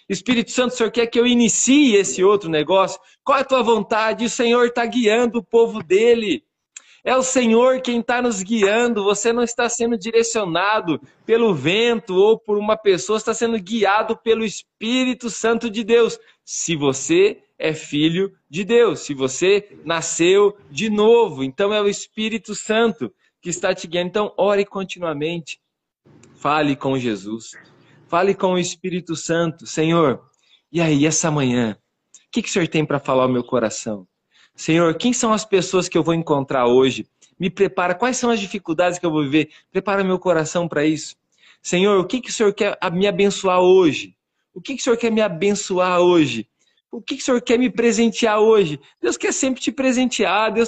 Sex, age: male, 20-39